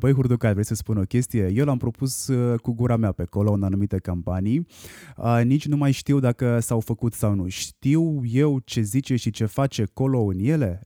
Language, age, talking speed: Romanian, 20-39, 205 wpm